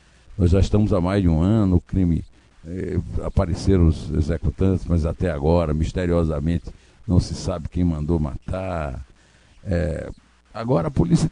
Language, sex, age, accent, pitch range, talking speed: Portuguese, male, 60-79, Brazilian, 80-105 Hz, 150 wpm